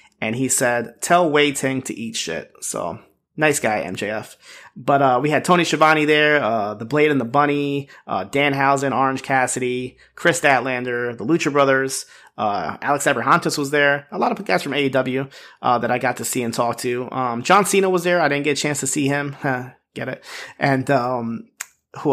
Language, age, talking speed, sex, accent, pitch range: English, 30-49, 200 wpm, male, American, 120-145 Hz